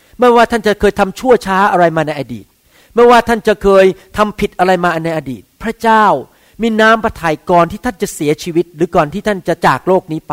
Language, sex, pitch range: Thai, male, 150-210 Hz